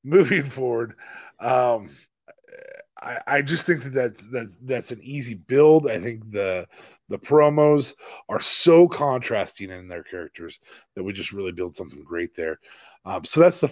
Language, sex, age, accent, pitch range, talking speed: English, male, 30-49, American, 110-140 Hz, 160 wpm